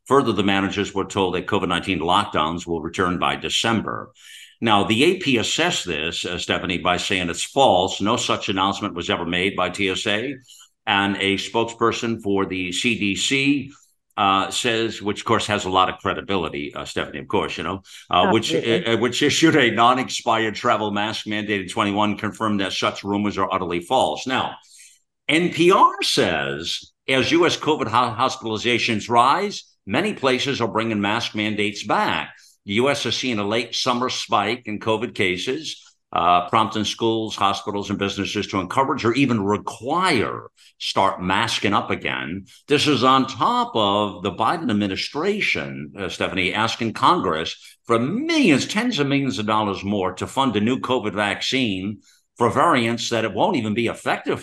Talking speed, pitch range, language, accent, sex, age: 165 wpm, 95-120 Hz, English, American, male, 50-69